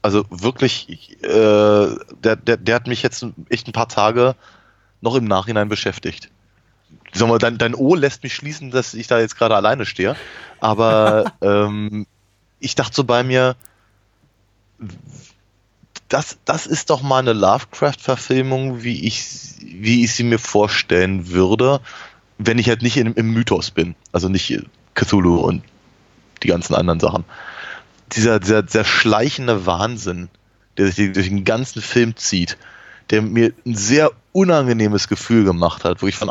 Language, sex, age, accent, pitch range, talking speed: German, male, 20-39, German, 105-120 Hz, 155 wpm